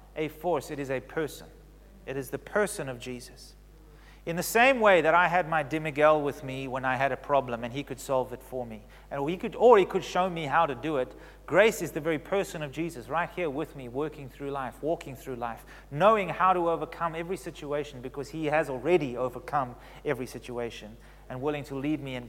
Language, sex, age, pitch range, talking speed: English, male, 30-49, 130-180 Hz, 225 wpm